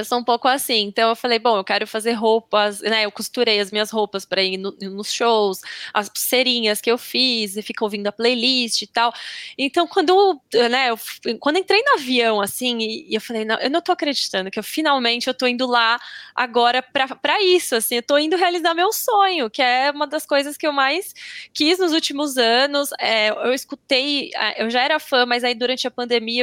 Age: 10-29